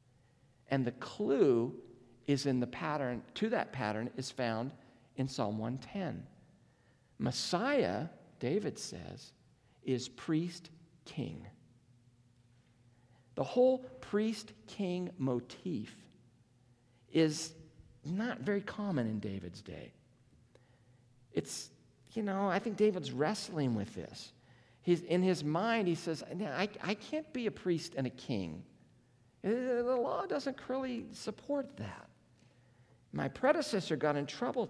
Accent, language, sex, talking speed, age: American, English, male, 115 wpm, 50-69